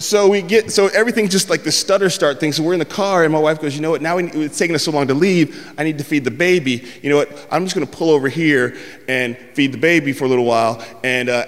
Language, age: English, 20-39